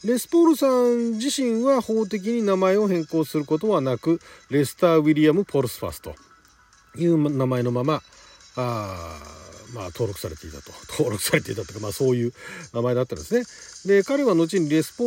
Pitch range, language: 125-190 Hz, Japanese